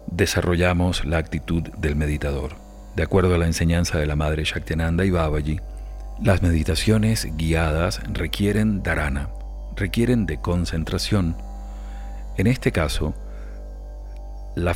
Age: 40-59